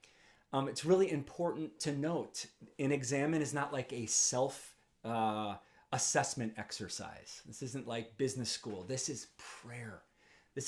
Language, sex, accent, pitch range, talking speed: English, male, American, 115-150 Hz, 135 wpm